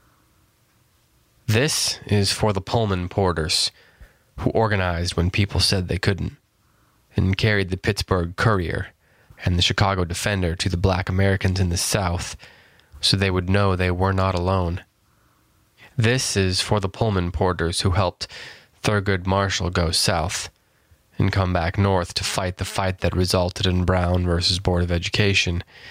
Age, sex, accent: 20-39, male, American